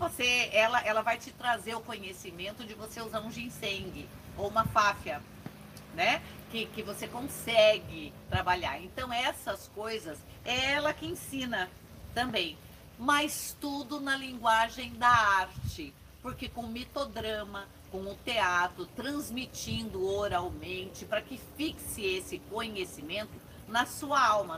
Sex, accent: female, Brazilian